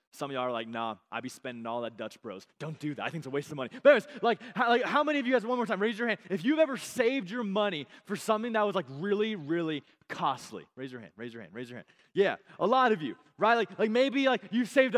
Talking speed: 295 wpm